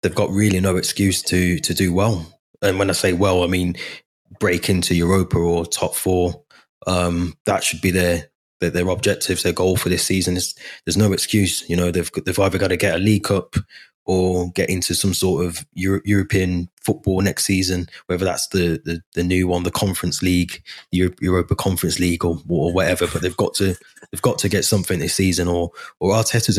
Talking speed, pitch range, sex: 205 wpm, 90-95 Hz, male